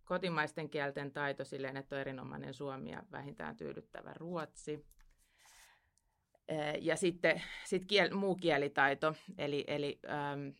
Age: 30-49